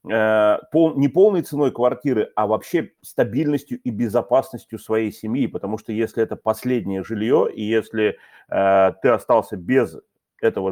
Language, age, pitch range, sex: Russian, 30-49, 100-125 Hz, male